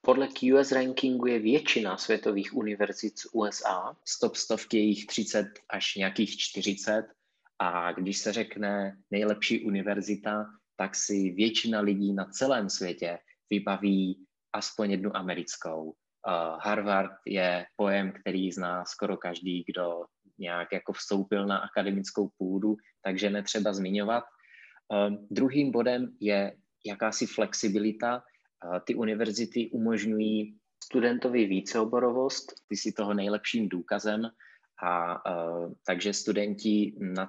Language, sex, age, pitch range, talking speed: Czech, male, 20-39, 95-110 Hz, 120 wpm